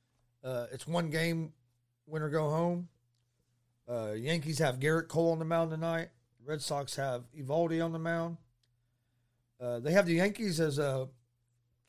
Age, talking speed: 40-59, 150 wpm